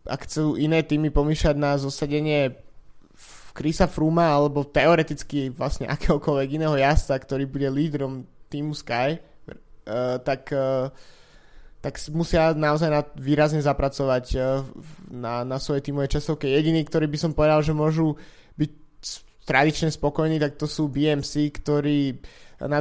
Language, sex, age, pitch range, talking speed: Slovak, male, 20-39, 135-150 Hz, 125 wpm